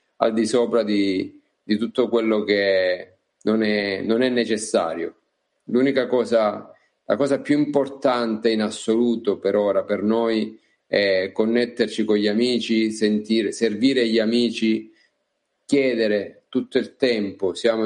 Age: 40-59